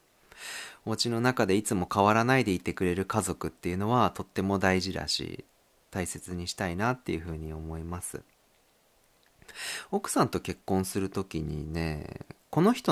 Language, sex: Japanese, male